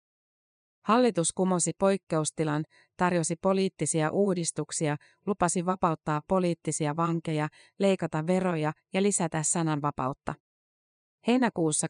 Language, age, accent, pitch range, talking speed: Finnish, 30-49, native, 155-185 Hz, 80 wpm